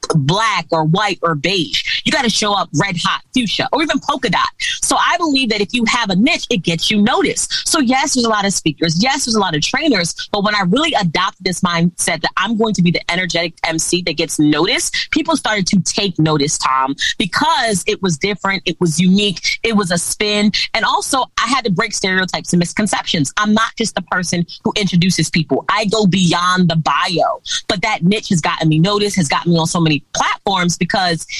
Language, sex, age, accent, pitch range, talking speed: English, female, 30-49, American, 170-215 Hz, 220 wpm